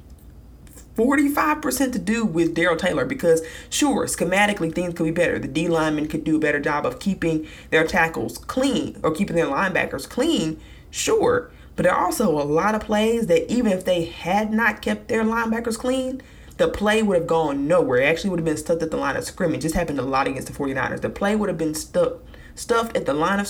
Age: 20-39